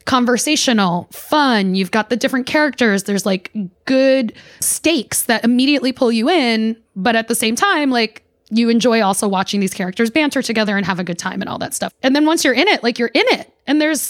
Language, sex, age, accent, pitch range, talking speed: English, female, 20-39, American, 210-270 Hz, 215 wpm